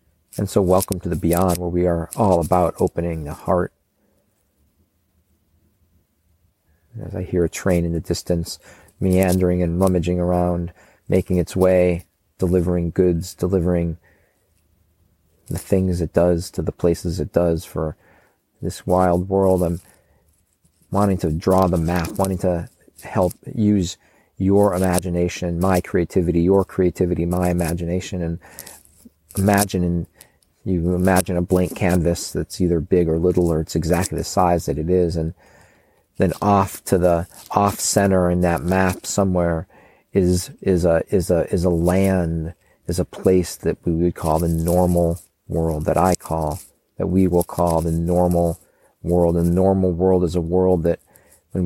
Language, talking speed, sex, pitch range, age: English, 150 wpm, male, 85-95 Hz, 40-59